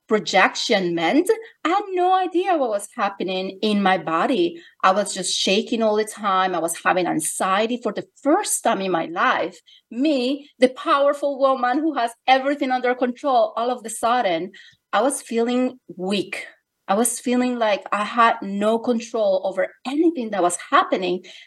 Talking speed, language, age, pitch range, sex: 170 wpm, English, 30-49, 190-255 Hz, female